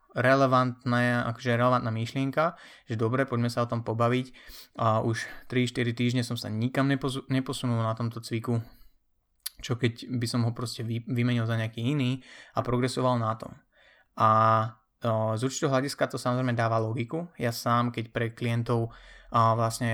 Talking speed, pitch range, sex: 145 wpm, 110-125 Hz, male